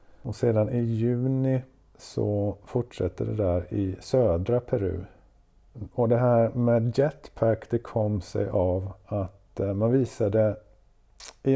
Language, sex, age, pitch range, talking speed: Swedish, male, 50-69, 100-120 Hz, 125 wpm